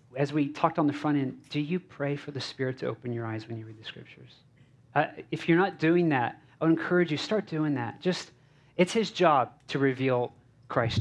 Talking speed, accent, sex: 230 wpm, American, male